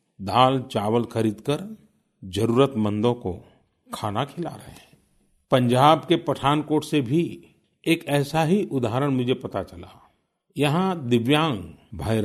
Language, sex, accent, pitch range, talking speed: Hindi, male, native, 110-150 Hz, 120 wpm